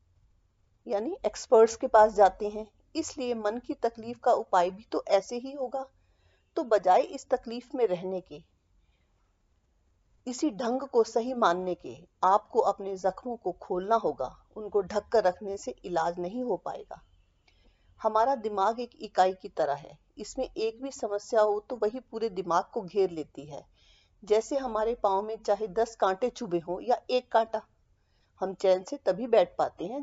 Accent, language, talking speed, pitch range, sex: native, Hindi, 170 wpm, 180-235 Hz, female